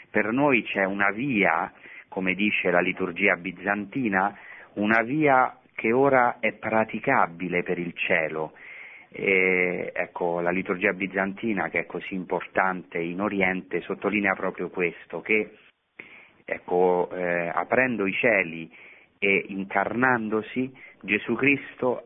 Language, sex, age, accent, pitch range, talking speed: Italian, male, 40-59, native, 85-100 Hz, 115 wpm